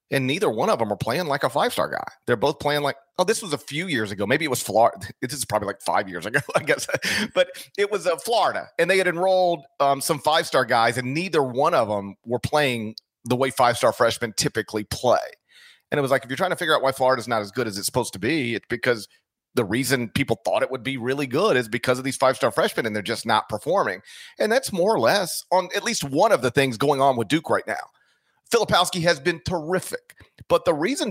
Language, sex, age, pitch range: English, male, 40-59, 120-165 Hz